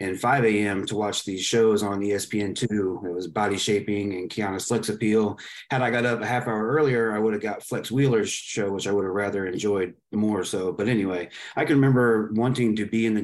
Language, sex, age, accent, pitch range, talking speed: English, male, 30-49, American, 100-115 Hz, 225 wpm